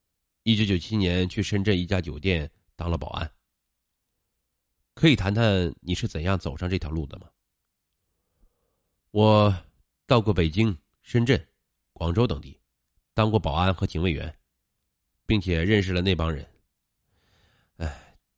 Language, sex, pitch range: Chinese, male, 80-105 Hz